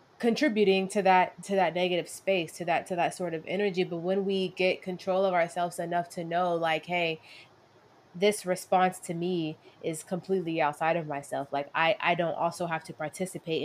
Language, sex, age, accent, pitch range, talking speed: English, female, 20-39, American, 165-190 Hz, 190 wpm